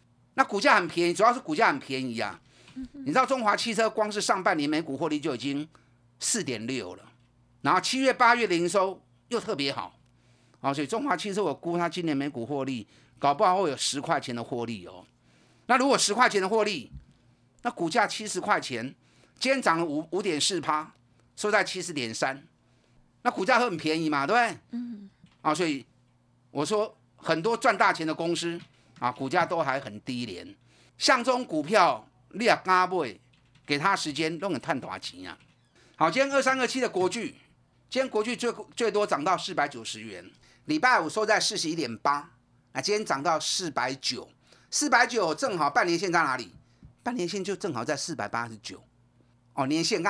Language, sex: Chinese, male